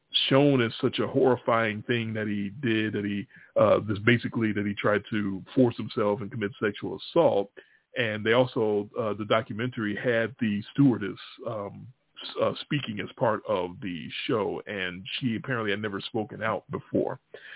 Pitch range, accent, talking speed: 105-130 Hz, American, 165 wpm